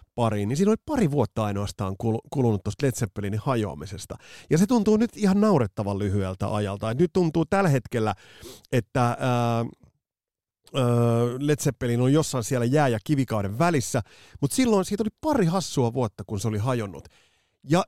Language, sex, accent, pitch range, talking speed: Finnish, male, native, 105-150 Hz, 150 wpm